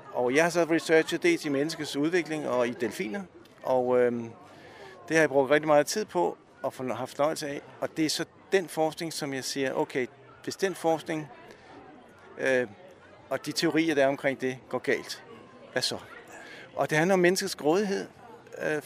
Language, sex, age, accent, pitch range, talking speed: Danish, male, 60-79, native, 135-160 Hz, 185 wpm